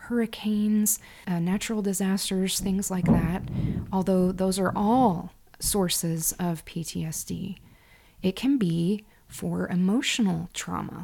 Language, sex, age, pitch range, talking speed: English, female, 20-39, 175-195 Hz, 110 wpm